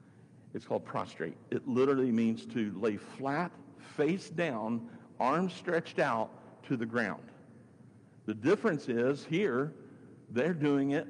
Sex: male